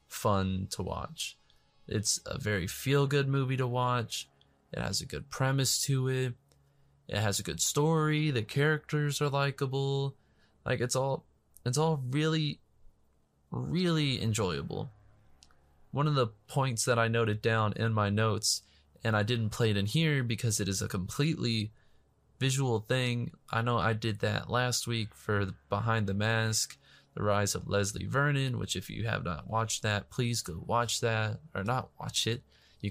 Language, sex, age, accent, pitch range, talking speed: English, male, 20-39, American, 100-130 Hz, 165 wpm